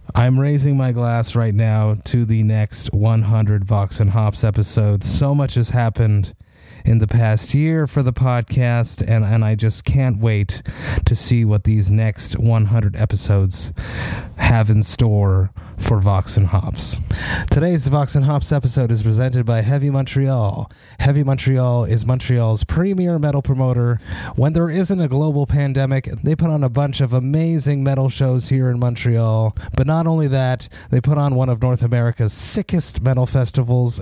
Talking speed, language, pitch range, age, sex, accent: 160 wpm, English, 110-135 Hz, 30-49, male, American